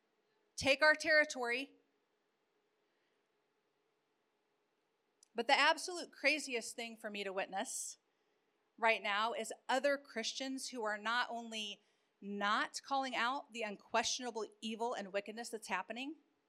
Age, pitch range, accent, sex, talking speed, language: 40-59, 225-345 Hz, American, female, 115 wpm, English